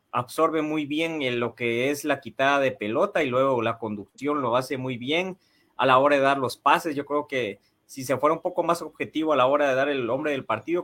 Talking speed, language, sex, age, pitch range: 250 wpm, Spanish, male, 30-49, 130-170 Hz